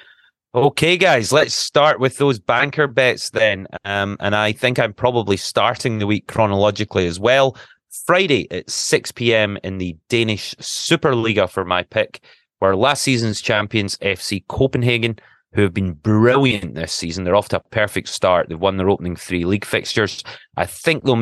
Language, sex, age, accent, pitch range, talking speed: English, male, 30-49, British, 95-125 Hz, 165 wpm